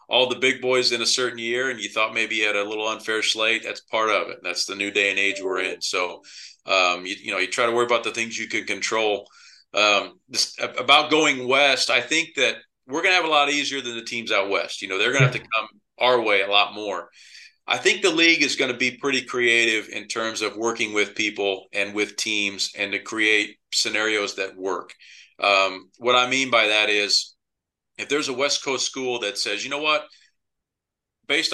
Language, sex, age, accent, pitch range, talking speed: English, male, 40-59, American, 105-130 Hz, 230 wpm